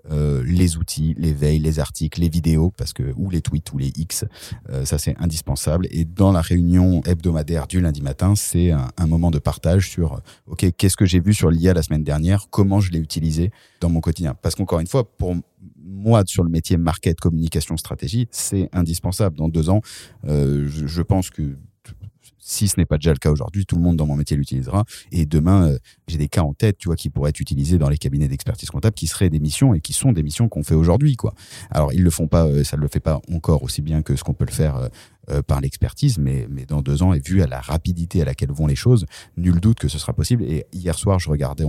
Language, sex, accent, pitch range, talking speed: French, male, French, 75-95 Hz, 245 wpm